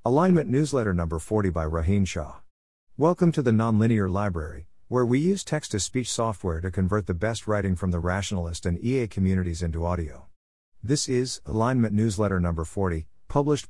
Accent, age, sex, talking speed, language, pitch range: American, 50-69, male, 160 wpm, English, 90-120 Hz